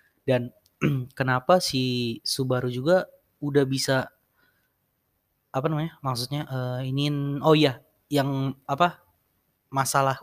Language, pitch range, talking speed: Indonesian, 120-140 Hz, 100 wpm